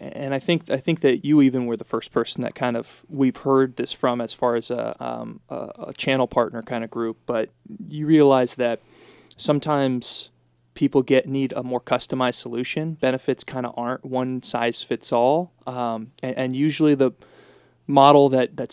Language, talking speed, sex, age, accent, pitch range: English, 190 wpm, male, 20-39, American, 125-140 Hz